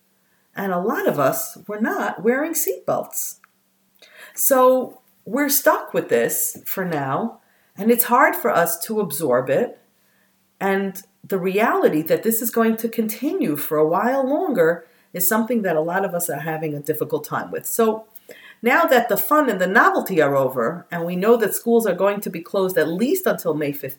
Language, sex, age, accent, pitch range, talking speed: English, female, 50-69, American, 160-230 Hz, 185 wpm